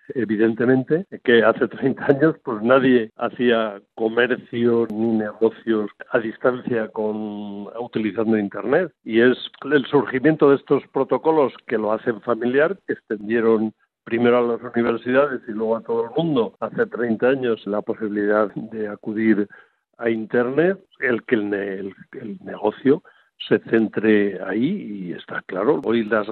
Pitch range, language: 110-130 Hz, Spanish